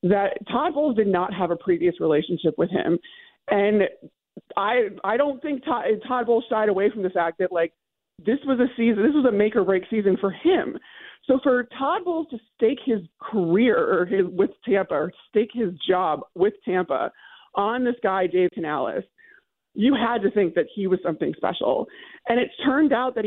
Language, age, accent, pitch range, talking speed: English, 40-59, American, 185-245 Hz, 190 wpm